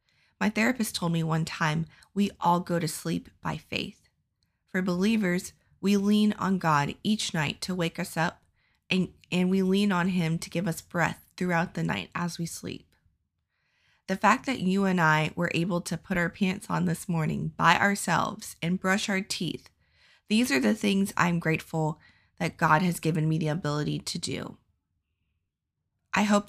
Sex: female